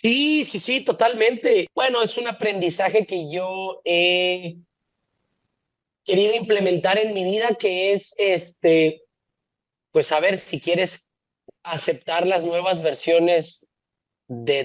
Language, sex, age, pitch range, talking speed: Spanish, male, 30-49, 160-205 Hz, 115 wpm